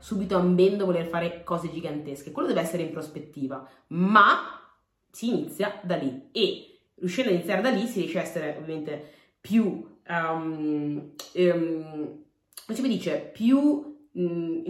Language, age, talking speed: Italian, 30-49, 145 wpm